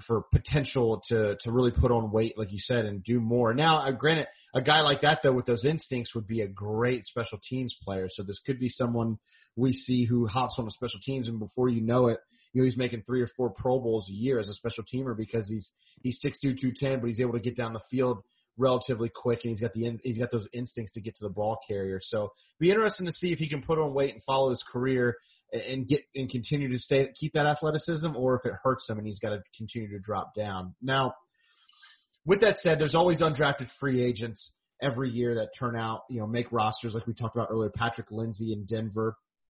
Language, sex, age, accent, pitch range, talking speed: English, male, 30-49, American, 115-135 Hz, 240 wpm